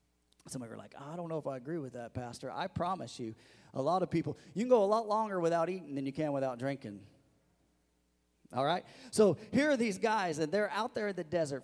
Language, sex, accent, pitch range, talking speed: English, male, American, 140-190 Hz, 245 wpm